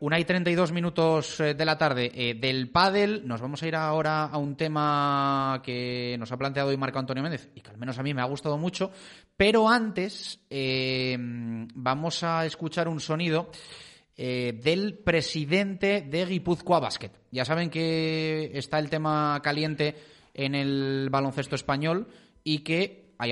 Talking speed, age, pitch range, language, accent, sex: 170 wpm, 30-49, 125-165 Hz, Spanish, Spanish, male